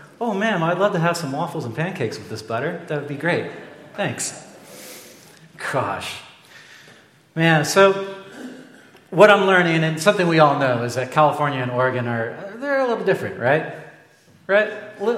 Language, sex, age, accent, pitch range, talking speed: English, male, 40-59, American, 130-180 Hz, 170 wpm